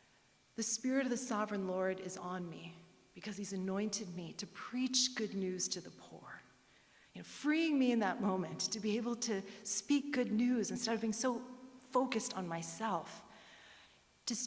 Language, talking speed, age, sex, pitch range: English, 175 wpm, 40-59, female, 195-255 Hz